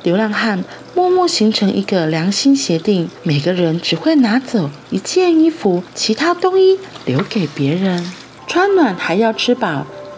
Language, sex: Chinese, female